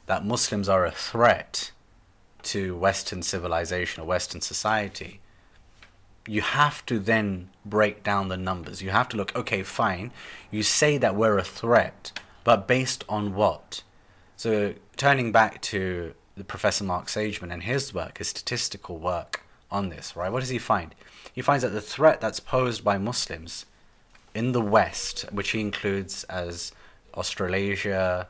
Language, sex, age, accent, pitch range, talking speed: English, male, 30-49, British, 90-110 Hz, 155 wpm